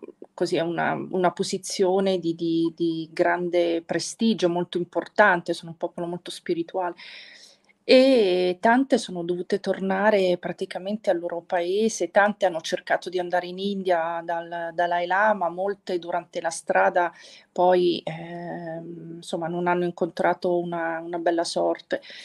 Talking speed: 135 wpm